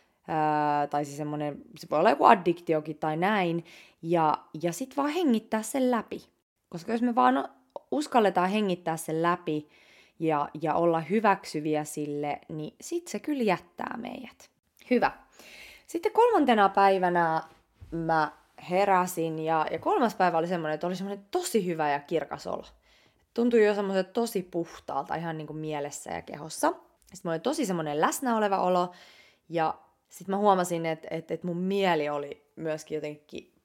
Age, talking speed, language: 20-39, 145 wpm, English